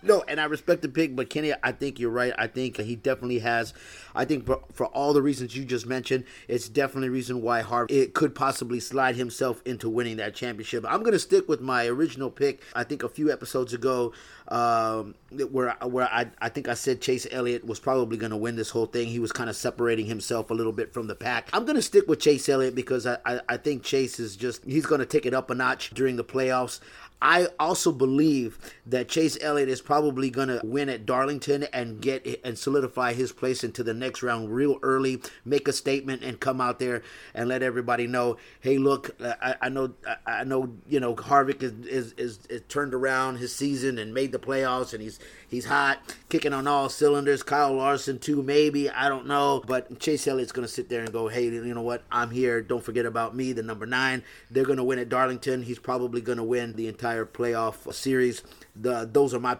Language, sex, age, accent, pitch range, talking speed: English, male, 30-49, American, 120-135 Hz, 225 wpm